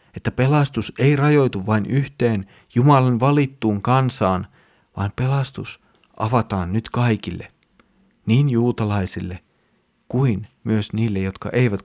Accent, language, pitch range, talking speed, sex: native, Finnish, 100-125 Hz, 105 wpm, male